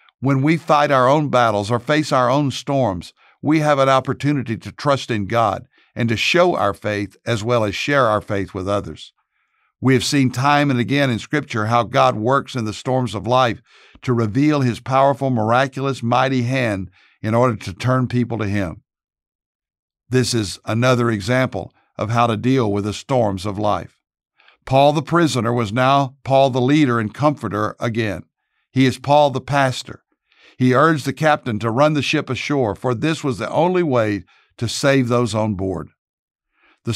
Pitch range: 115-140 Hz